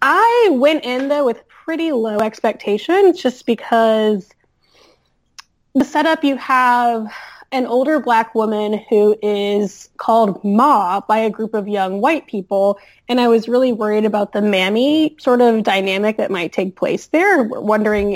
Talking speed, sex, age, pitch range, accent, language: 150 wpm, female, 20-39, 200-270 Hz, American, English